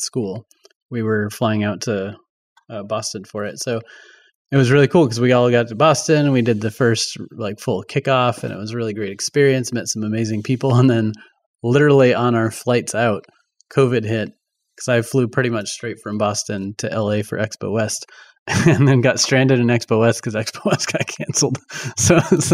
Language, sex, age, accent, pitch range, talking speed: English, male, 20-39, American, 110-135 Hz, 200 wpm